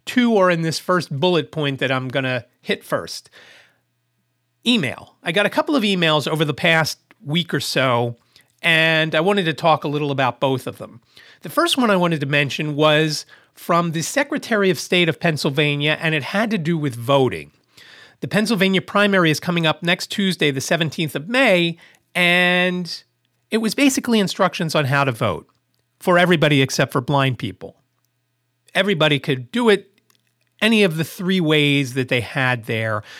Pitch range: 135-170 Hz